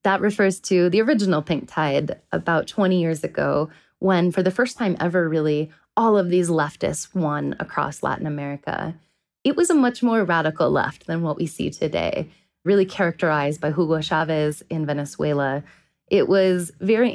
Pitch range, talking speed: 160-195 Hz, 170 wpm